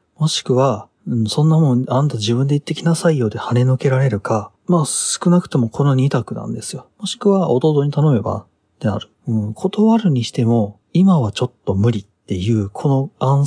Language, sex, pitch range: Japanese, male, 110-160 Hz